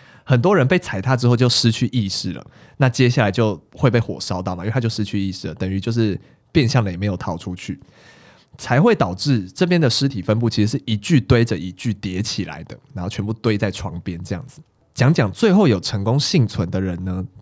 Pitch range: 100-135 Hz